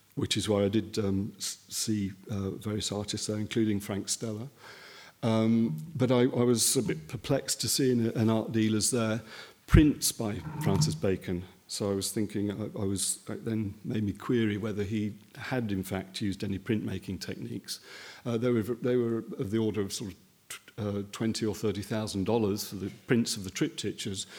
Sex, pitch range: male, 100-120 Hz